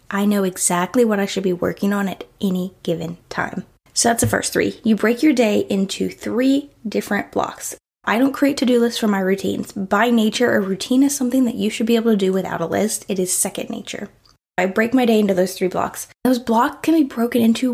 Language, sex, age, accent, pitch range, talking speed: English, female, 10-29, American, 200-255 Hz, 230 wpm